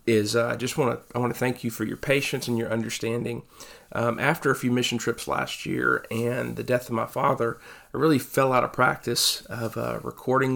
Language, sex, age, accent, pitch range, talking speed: English, male, 40-59, American, 115-120 Hz, 225 wpm